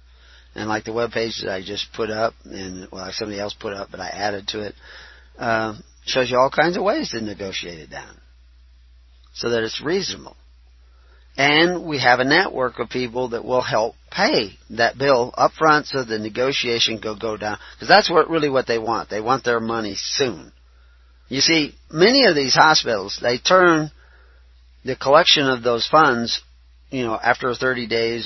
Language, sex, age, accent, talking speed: English, male, 40-59, American, 185 wpm